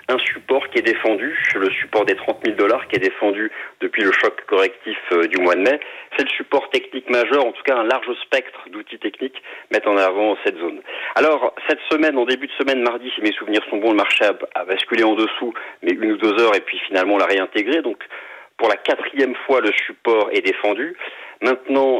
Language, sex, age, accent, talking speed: French, male, 40-59, French, 220 wpm